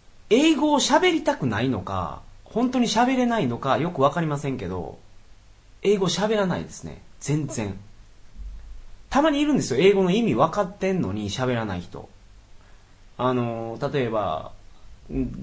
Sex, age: male, 30-49